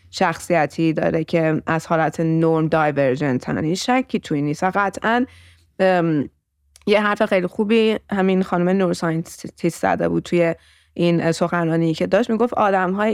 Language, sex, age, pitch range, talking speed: Persian, female, 20-39, 175-230 Hz, 145 wpm